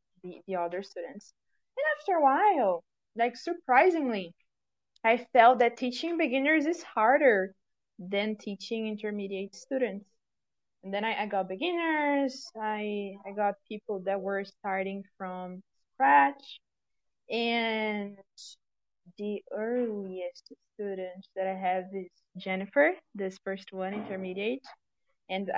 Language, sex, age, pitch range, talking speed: English, female, 20-39, 190-240 Hz, 115 wpm